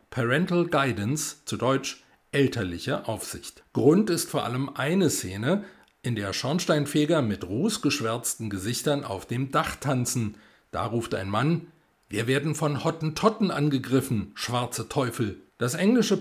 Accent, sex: German, male